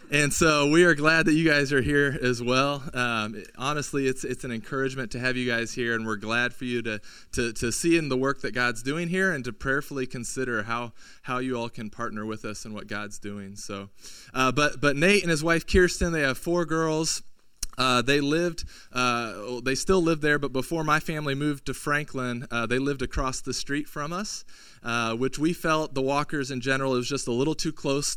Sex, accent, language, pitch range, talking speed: male, American, English, 120-145 Hz, 225 wpm